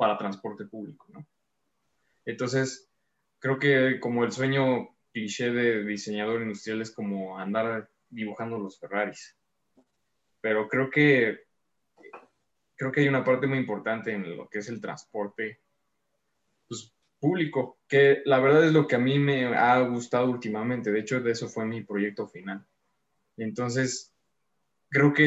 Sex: male